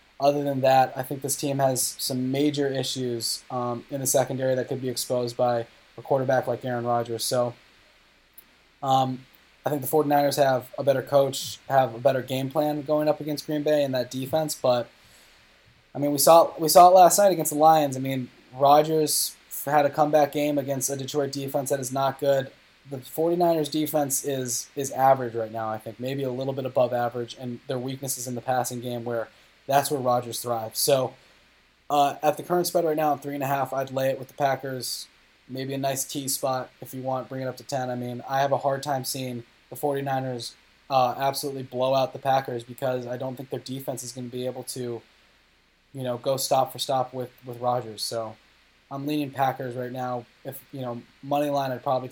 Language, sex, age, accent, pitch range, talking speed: English, male, 20-39, American, 125-140 Hz, 215 wpm